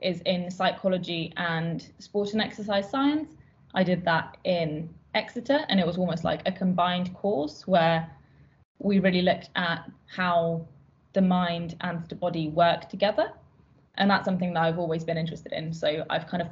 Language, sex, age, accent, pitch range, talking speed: English, female, 20-39, British, 165-190 Hz, 170 wpm